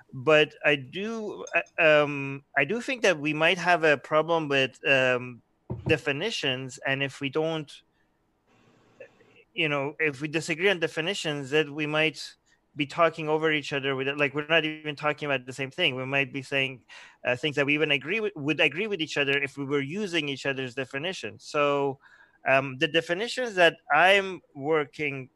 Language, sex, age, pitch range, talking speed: English, male, 30-49, 130-155 Hz, 175 wpm